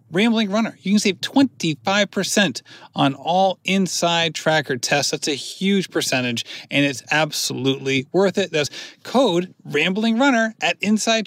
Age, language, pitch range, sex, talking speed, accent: 30-49, English, 145-200 Hz, male, 135 wpm, American